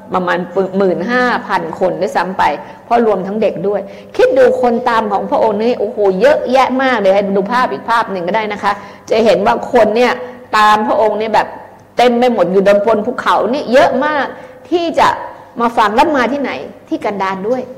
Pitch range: 195-270 Hz